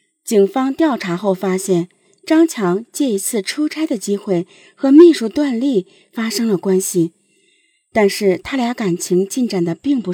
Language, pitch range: Chinese, 185-275 Hz